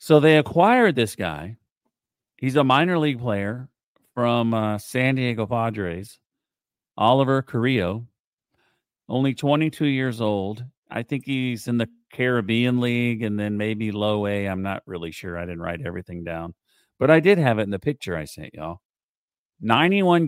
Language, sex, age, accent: English, male, 40-59, American